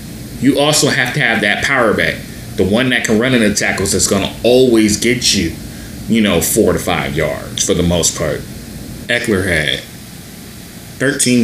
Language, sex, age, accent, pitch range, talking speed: English, male, 30-49, American, 90-125 Hz, 185 wpm